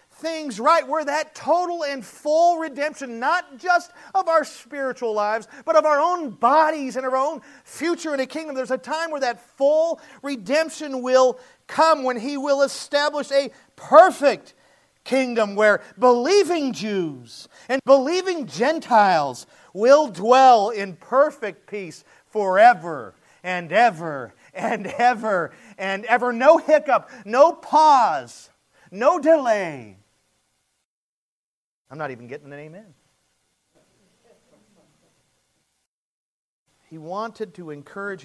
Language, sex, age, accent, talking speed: English, male, 40-59, American, 120 wpm